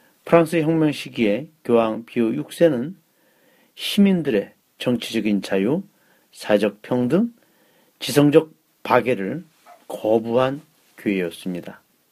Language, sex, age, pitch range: Korean, male, 40-59, 110-155 Hz